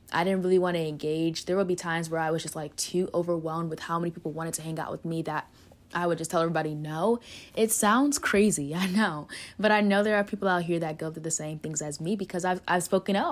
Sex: female